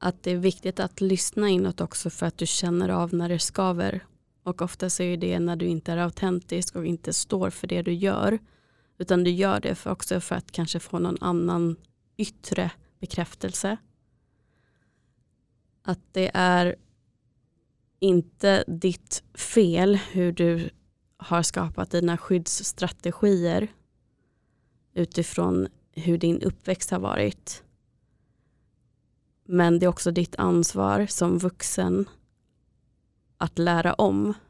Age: 20-39